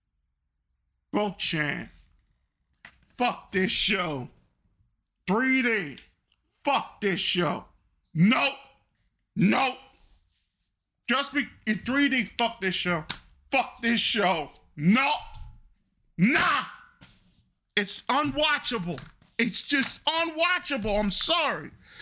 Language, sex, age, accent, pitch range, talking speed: English, male, 40-59, American, 175-275 Hz, 85 wpm